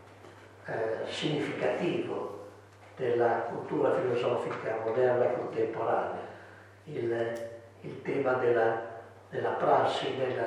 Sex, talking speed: male, 80 wpm